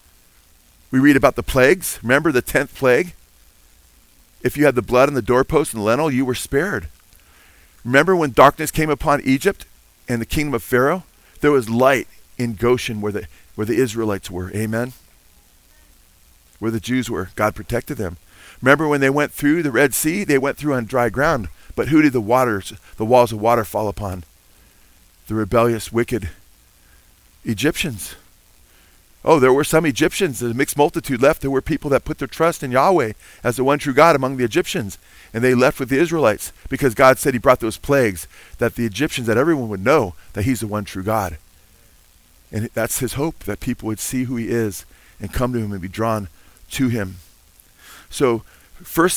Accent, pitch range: American, 95-135 Hz